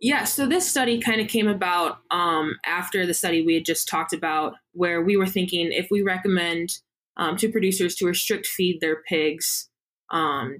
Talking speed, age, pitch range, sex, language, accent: 185 wpm, 20-39, 160-185 Hz, female, English, American